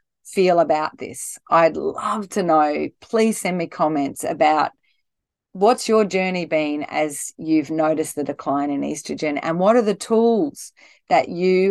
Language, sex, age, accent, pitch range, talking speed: English, female, 40-59, Australian, 155-190 Hz, 155 wpm